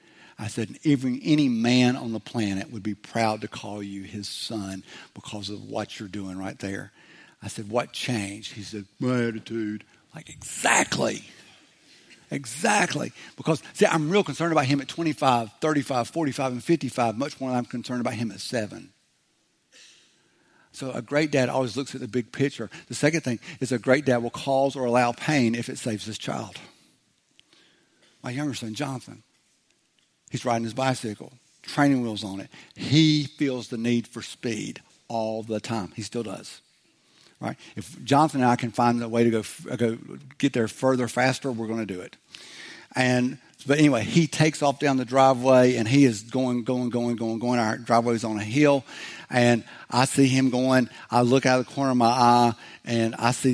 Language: English